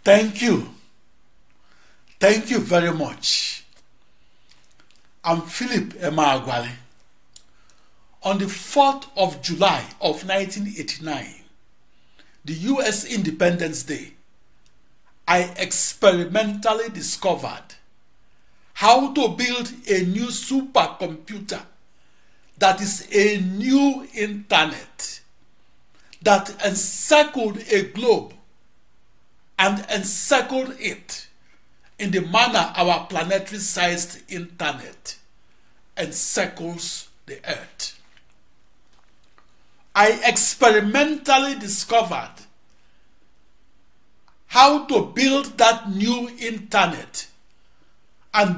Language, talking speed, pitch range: English, 75 wpm, 190-235 Hz